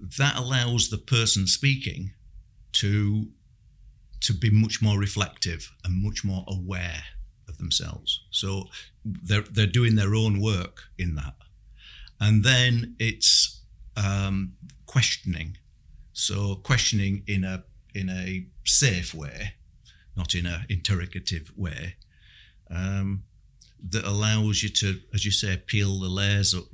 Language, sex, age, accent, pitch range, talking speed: English, male, 50-69, British, 95-110 Hz, 125 wpm